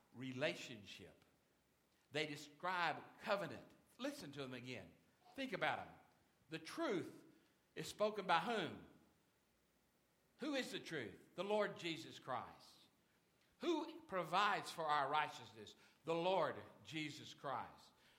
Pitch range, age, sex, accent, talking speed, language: 155-220 Hz, 60-79, male, American, 110 wpm, English